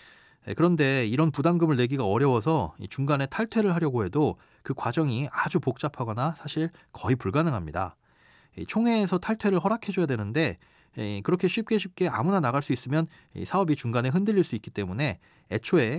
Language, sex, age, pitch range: Korean, male, 30-49, 110-165 Hz